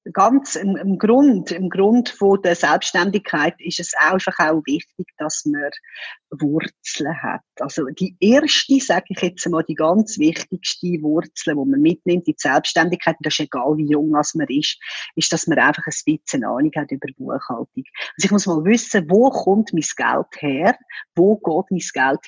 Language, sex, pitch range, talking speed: German, female, 165-210 Hz, 180 wpm